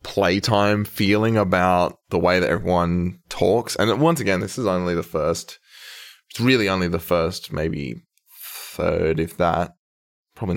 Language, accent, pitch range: English, Australian, 85-105 Hz